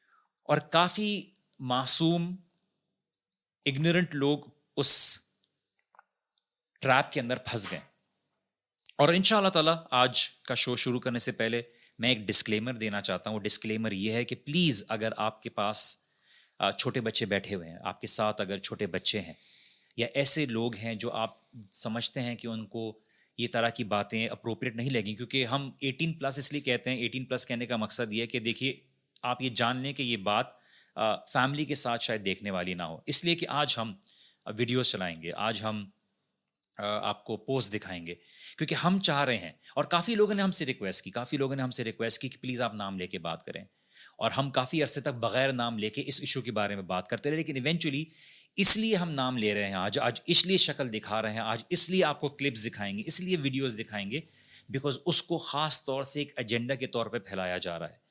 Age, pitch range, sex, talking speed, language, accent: 30-49, 110-145 Hz, male, 165 wpm, English, Indian